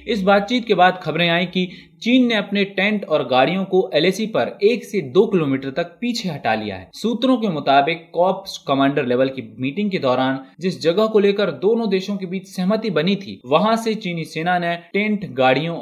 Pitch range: 125-185 Hz